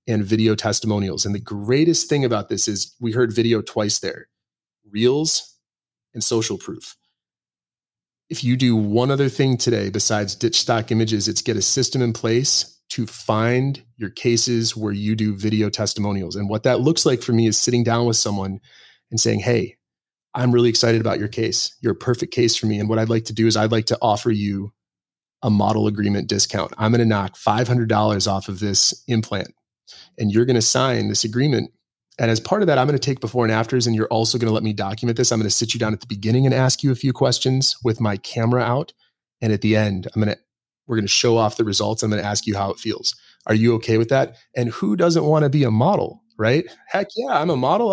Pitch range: 105-125 Hz